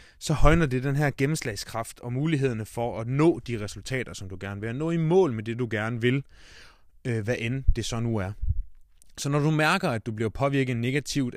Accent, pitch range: native, 100-140 Hz